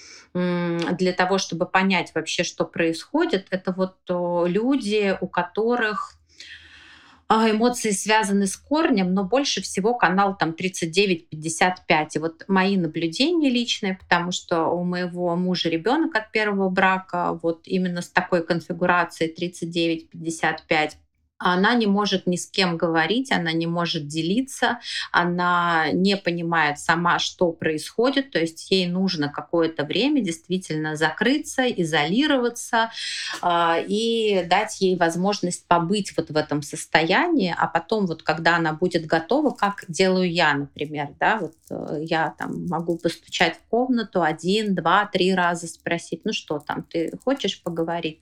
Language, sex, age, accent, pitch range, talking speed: Russian, female, 30-49, native, 165-205 Hz, 130 wpm